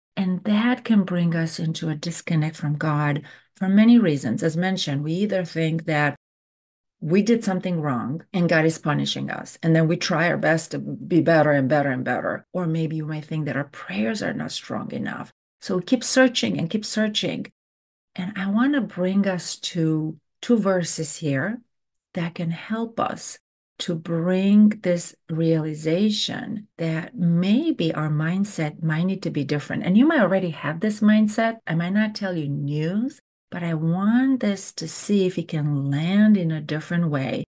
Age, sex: 40-59, female